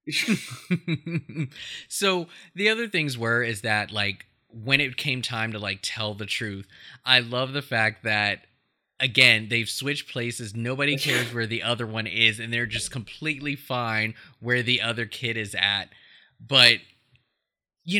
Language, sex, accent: English, male, American